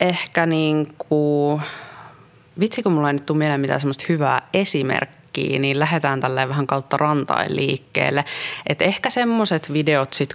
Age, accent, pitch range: 20-39, native, 130-160 Hz